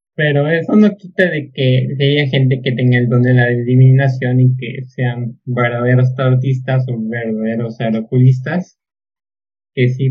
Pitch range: 125-135 Hz